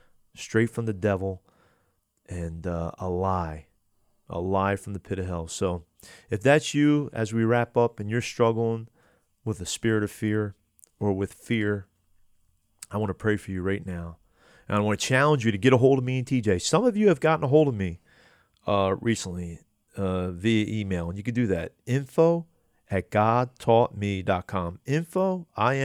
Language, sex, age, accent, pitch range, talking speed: English, male, 30-49, American, 95-120 Hz, 185 wpm